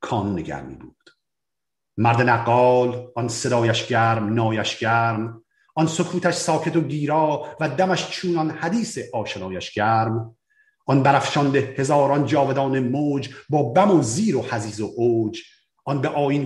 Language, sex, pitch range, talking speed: Persian, male, 115-175 Hz, 140 wpm